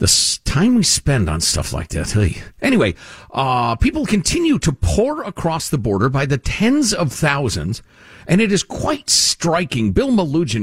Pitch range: 105-175 Hz